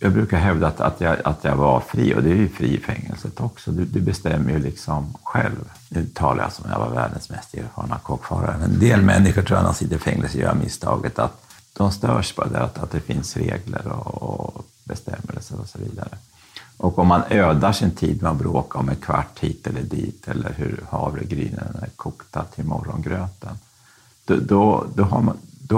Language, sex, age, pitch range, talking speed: Swedish, male, 50-69, 85-115 Hz, 200 wpm